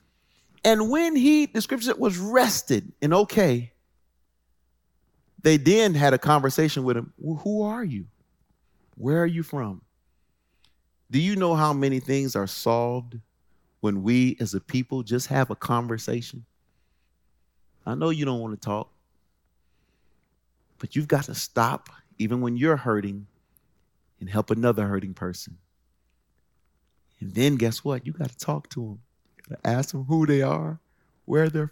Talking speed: 150 wpm